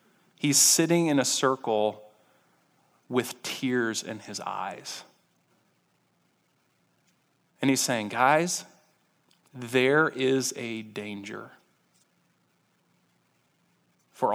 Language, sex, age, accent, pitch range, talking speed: English, male, 30-49, American, 110-145 Hz, 80 wpm